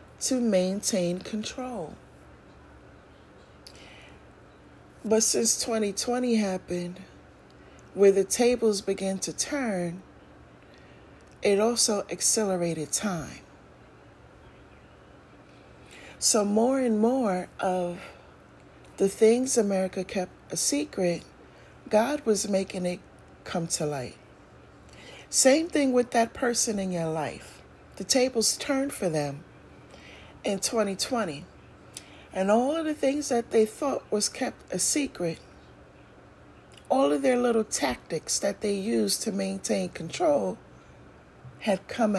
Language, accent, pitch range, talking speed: English, American, 170-225 Hz, 105 wpm